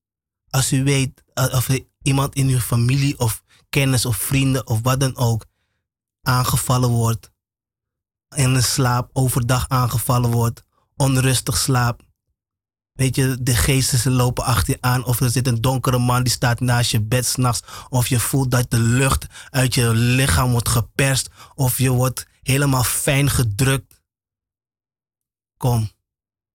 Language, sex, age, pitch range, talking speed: Dutch, male, 20-39, 115-130 Hz, 145 wpm